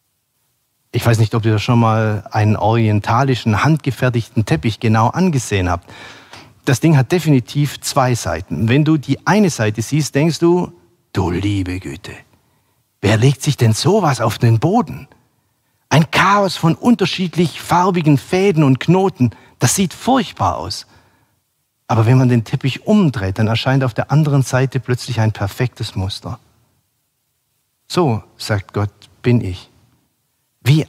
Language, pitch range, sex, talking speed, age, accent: German, 115-165 Hz, male, 140 wpm, 50-69, German